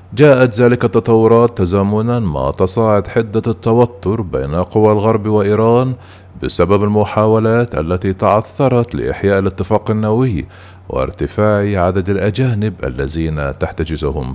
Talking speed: 100 wpm